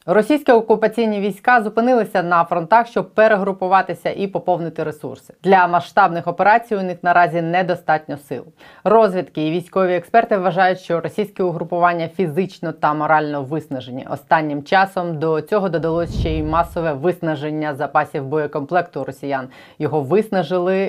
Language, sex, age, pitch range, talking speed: Ukrainian, female, 20-39, 155-195 Hz, 130 wpm